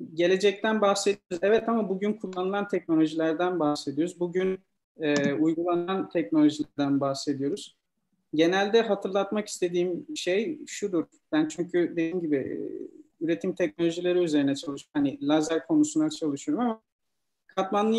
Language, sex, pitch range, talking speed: Turkish, male, 155-195 Hz, 105 wpm